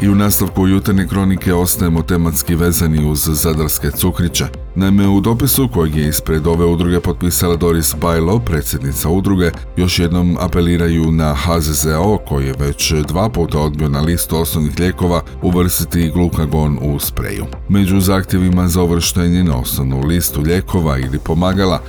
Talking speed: 145 wpm